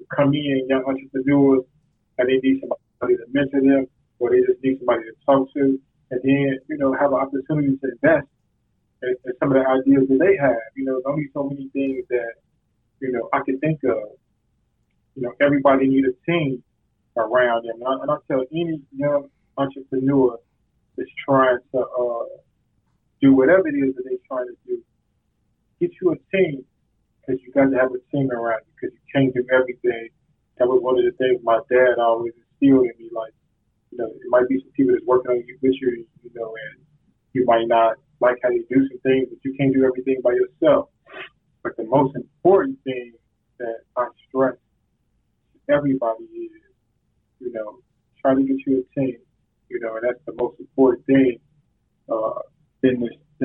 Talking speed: 185 wpm